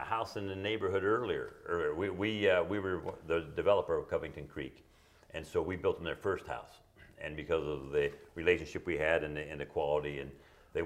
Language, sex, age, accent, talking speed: English, male, 60-79, American, 210 wpm